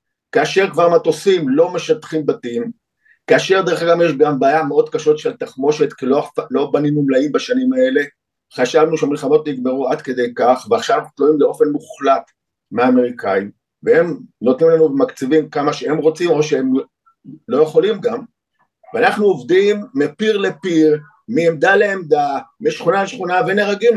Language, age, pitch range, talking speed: Hebrew, 50-69, 160-240 Hz, 135 wpm